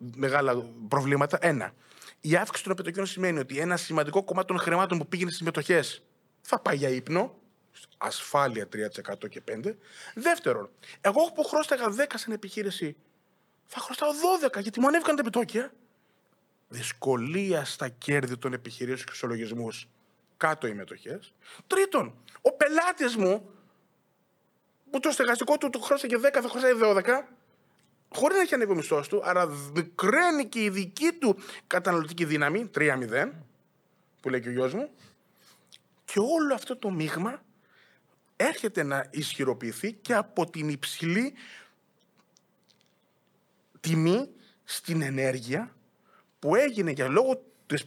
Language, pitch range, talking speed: Greek, 145-240 Hz, 130 wpm